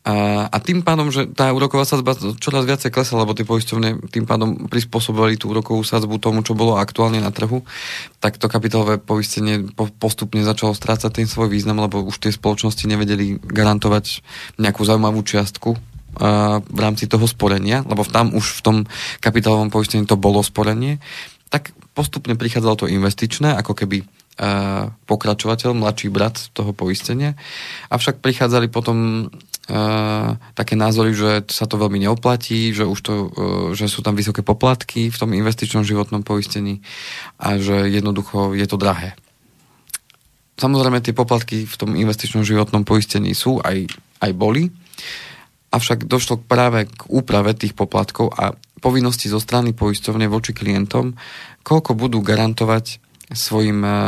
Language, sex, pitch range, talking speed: Slovak, male, 105-120 Hz, 145 wpm